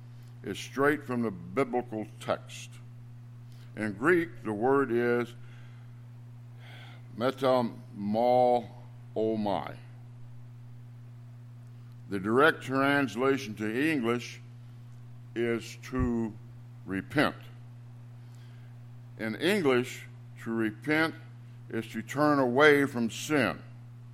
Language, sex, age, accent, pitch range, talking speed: English, male, 60-79, American, 115-120 Hz, 75 wpm